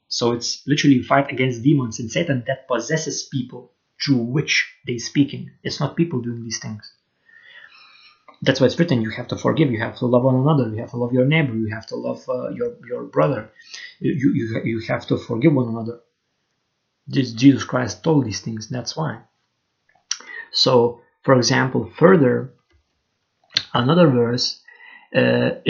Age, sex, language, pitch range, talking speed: 30-49, male, English, 120-160 Hz, 165 wpm